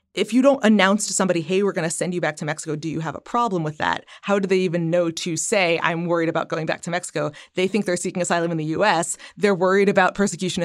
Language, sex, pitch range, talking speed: English, female, 155-205 Hz, 270 wpm